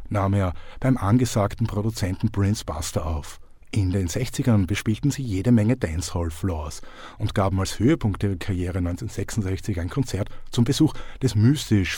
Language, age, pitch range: German, 50-69, 90-115 Hz